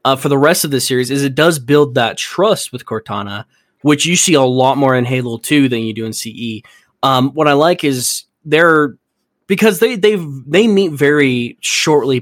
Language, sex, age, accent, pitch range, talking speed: English, male, 20-39, American, 115-150 Hz, 205 wpm